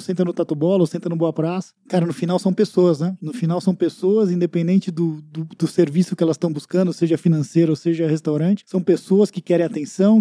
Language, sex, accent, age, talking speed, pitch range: Portuguese, male, Brazilian, 20-39, 215 wpm, 165-200 Hz